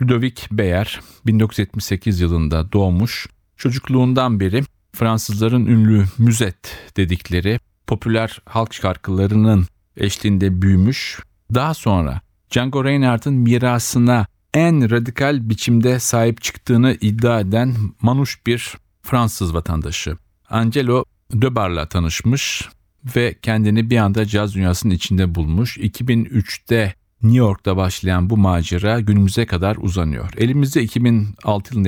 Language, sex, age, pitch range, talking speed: Turkish, male, 40-59, 95-120 Hz, 105 wpm